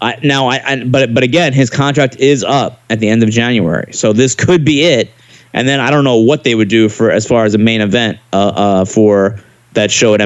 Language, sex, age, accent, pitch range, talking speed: English, male, 20-39, American, 115-135 Hz, 250 wpm